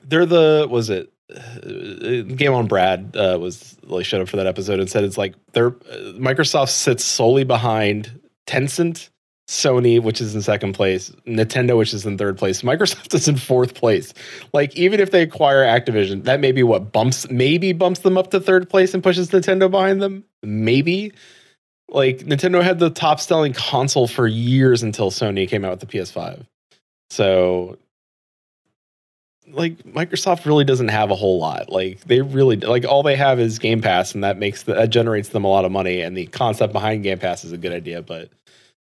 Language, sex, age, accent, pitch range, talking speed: English, male, 20-39, American, 105-145 Hz, 195 wpm